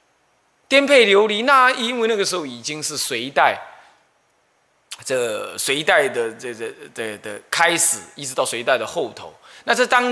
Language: Chinese